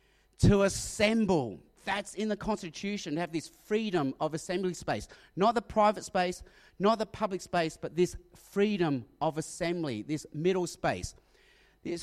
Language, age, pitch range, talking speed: English, 30-49, 155-205 Hz, 150 wpm